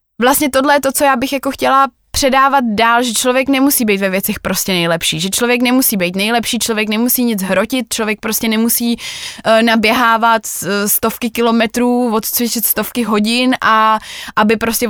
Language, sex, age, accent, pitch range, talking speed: Czech, female, 20-39, native, 220-245 Hz, 160 wpm